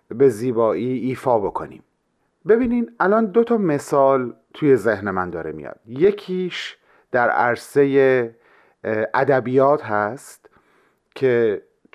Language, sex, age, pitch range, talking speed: Persian, male, 40-59, 120-175 Hz, 100 wpm